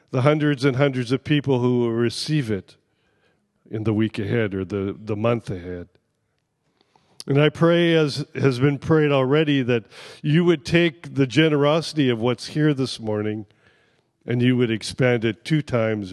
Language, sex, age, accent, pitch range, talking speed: English, male, 50-69, American, 115-145 Hz, 165 wpm